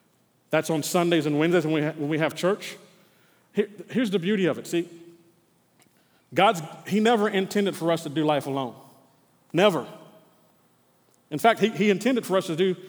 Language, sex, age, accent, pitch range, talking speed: English, male, 40-59, American, 165-215 Hz, 170 wpm